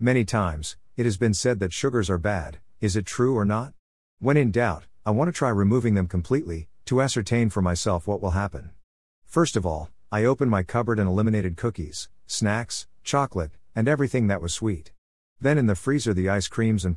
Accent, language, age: American, English, 50-69